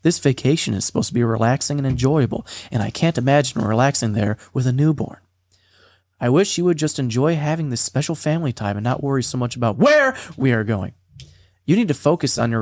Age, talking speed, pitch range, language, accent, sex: 30-49, 215 wpm, 100-145 Hz, English, American, male